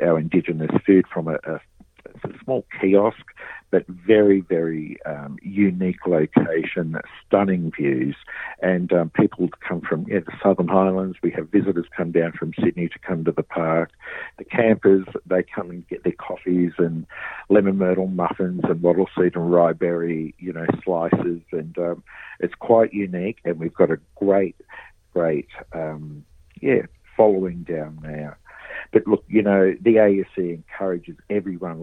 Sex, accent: male, Australian